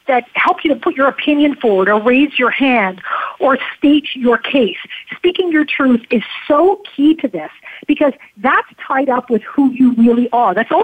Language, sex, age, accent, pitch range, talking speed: English, female, 50-69, American, 230-290 Hz, 195 wpm